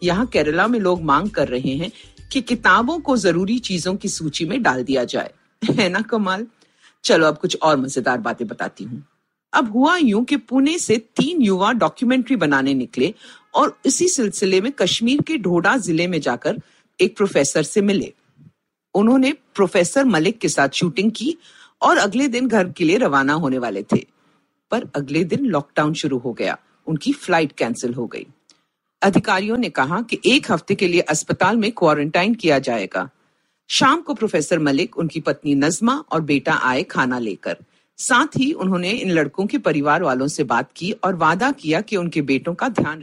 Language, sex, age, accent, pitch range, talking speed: Hindi, female, 50-69, native, 155-240 Hz, 135 wpm